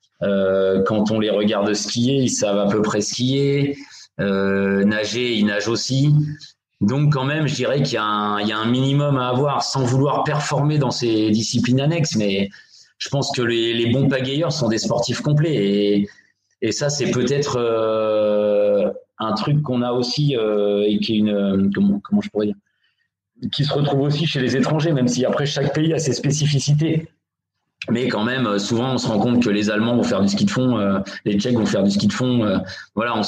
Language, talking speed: French, 215 wpm